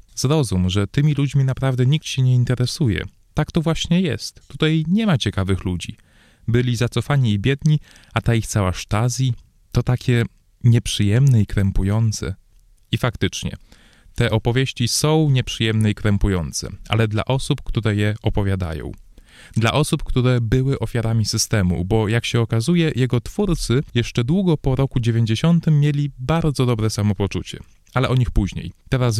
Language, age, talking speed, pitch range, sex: Polish, 20-39, 150 wpm, 105-135 Hz, male